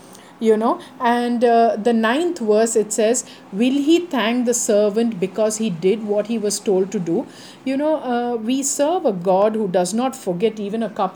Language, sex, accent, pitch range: English, female, Indian, 195-245 Hz